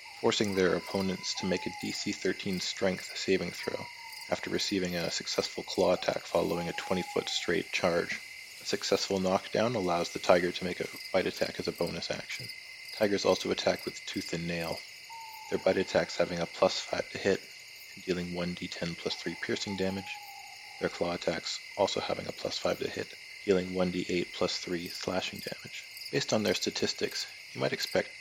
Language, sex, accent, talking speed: English, male, American, 175 wpm